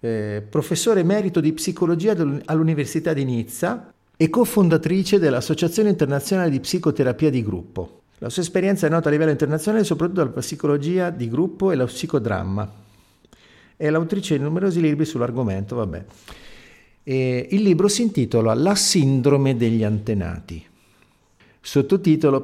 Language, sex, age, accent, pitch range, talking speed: Italian, male, 50-69, native, 110-160 Hz, 130 wpm